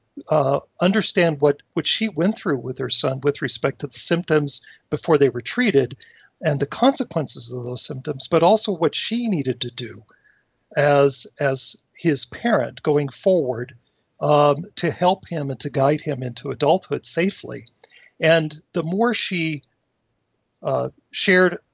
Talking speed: 150 wpm